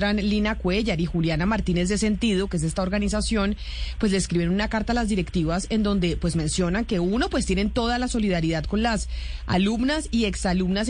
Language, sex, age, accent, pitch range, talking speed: Spanish, female, 30-49, Colombian, 175-225 Hz, 200 wpm